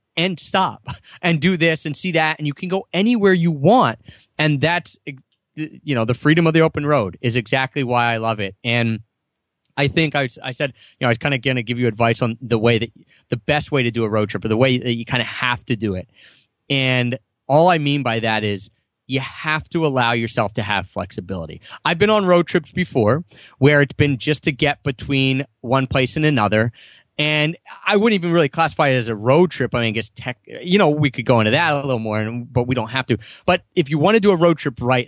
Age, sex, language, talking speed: 30-49, male, English, 245 wpm